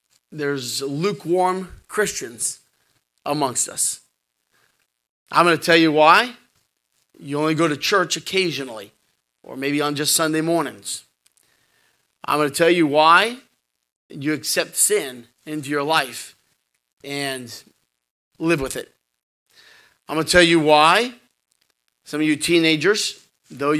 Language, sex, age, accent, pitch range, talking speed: English, male, 40-59, American, 140-165 Hz, 125 wpm